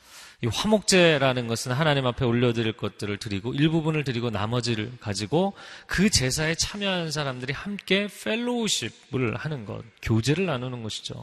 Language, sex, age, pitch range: Korean, male, 30-49, 110-155 Hz